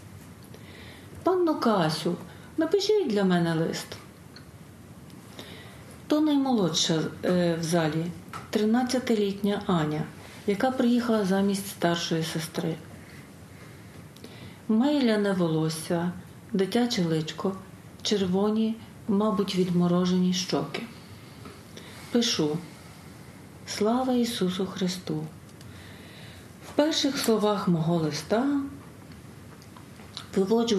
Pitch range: 160-220 Hz